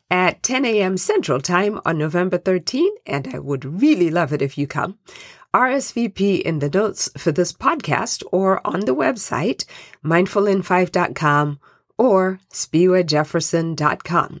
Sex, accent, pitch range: female, American, 150-210 Hz